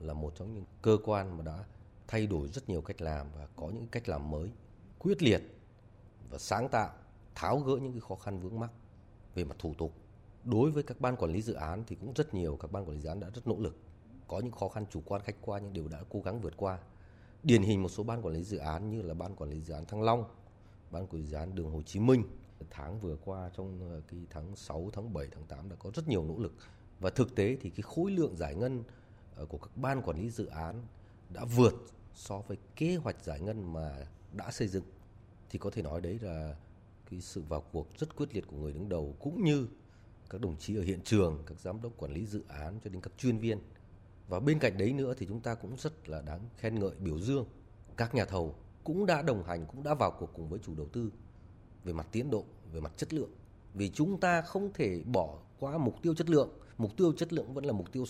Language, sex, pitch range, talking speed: Vietnamese, male, 90-115 Hz, 250 wpm